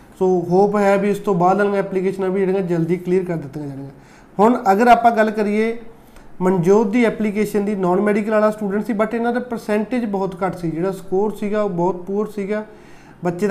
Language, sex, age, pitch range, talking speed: Punjabi, male, 20-39, 190-210 Hz, 205 wpm